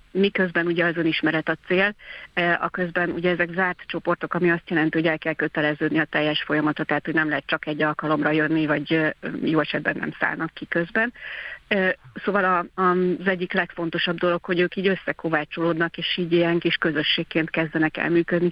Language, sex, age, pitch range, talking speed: Hungarian, female, 40-59, 160-190 Hz, 170 wpm